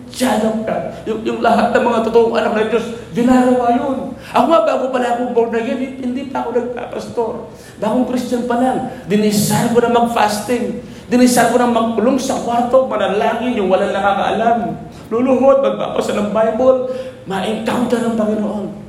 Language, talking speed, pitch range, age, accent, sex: Filipino, 155 wpm, 195-245 Hz, 40-59, native, male